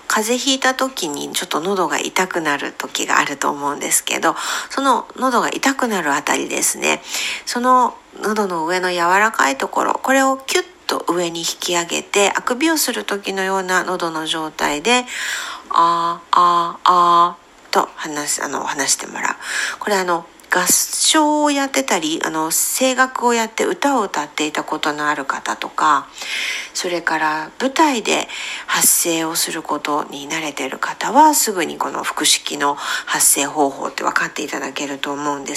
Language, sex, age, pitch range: Japanese, female, 50-69, 170-275 Hz